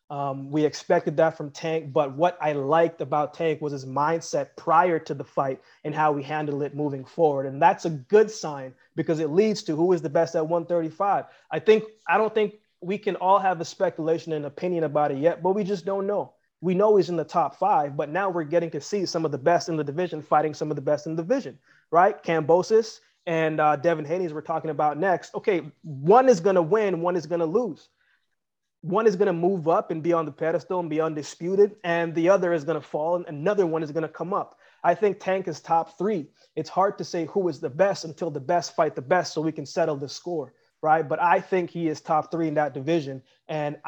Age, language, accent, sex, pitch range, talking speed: 20-39, English, American, male, 150-175 Hz, 245 wpm